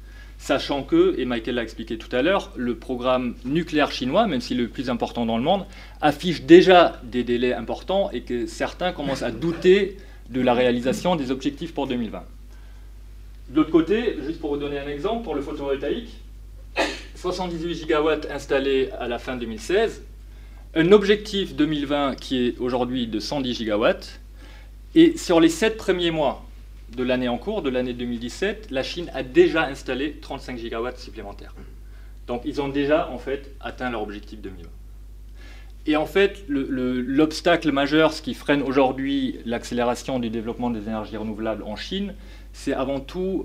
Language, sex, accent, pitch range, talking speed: French, male, French, 115-160 Hz, 165 wpm